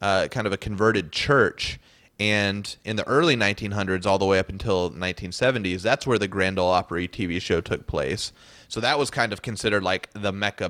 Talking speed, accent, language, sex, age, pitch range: 200 wpm, American, English, male, 30-49, 95-110 Hz